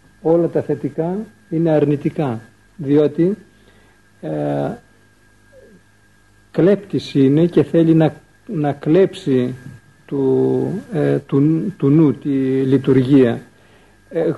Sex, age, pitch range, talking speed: male, 50-69, 125-165 Hz, 90 wpm